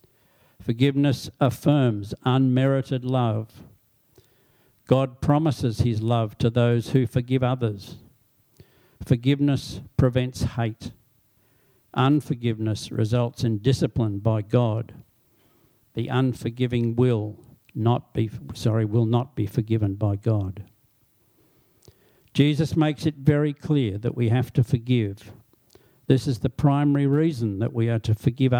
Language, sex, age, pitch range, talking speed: English, male, 60-79, 115-135 Hz, 115 wpm